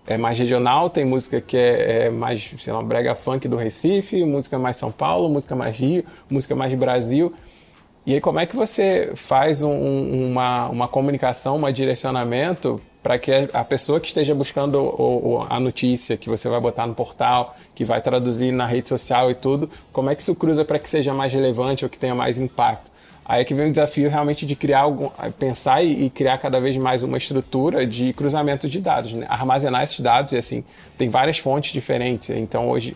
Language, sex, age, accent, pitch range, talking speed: Portuguese, male, 20-39, Brazilian, 125-145 Hz, 195 wpm